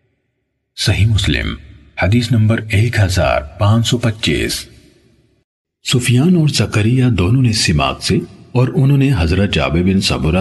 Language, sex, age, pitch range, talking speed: Urdu, male, 50-69, 85-125 Hz, 125 wpm